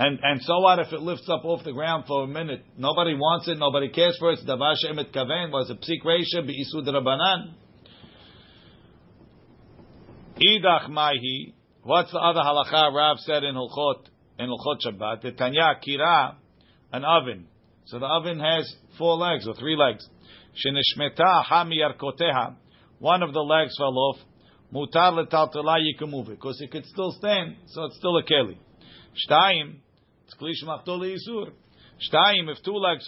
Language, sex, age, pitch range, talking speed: English, male, 50-69, 135-170 Hz, 125 wpm